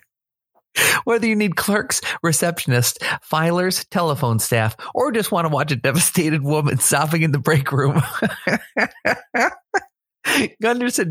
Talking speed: 120 wpm